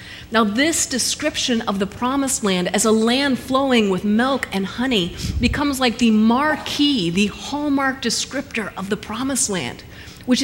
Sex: female